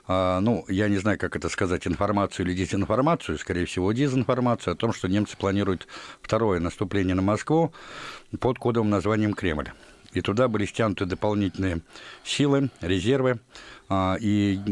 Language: Russian